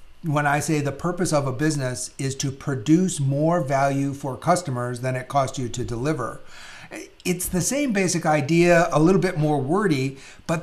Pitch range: 130-165 Hz